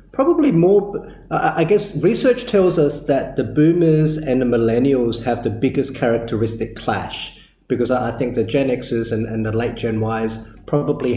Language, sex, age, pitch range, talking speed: English, male, 30-49, 110-130 Hz, 165 wpm